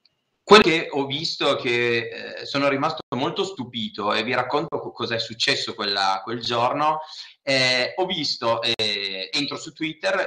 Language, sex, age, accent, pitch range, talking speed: Italian, male, 30-49, native, 110-150 Hz, 150 wpm